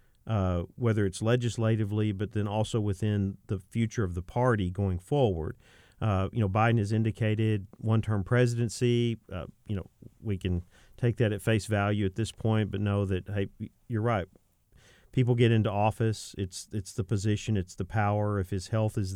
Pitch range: 95-115 Hz